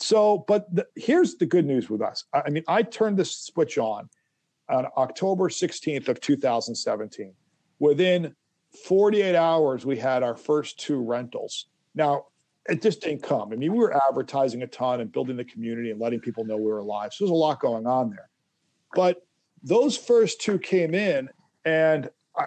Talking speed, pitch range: 180 wpm, 145-180 Hz